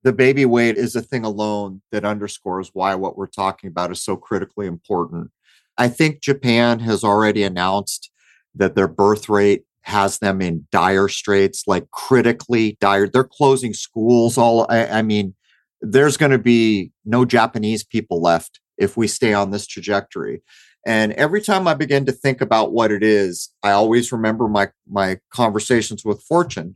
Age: 40-59